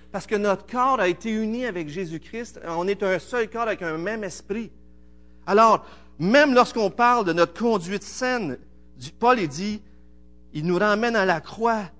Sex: male